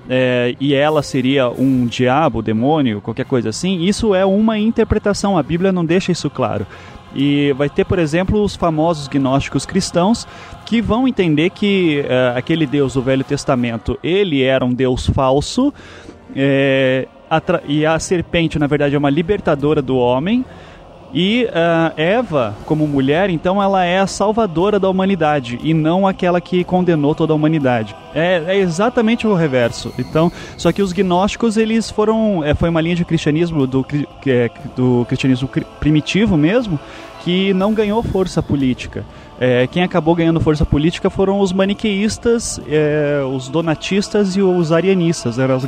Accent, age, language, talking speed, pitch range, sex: Brazilian, 20-39, Portuguese, 155 wpm, 130-185 Hz, male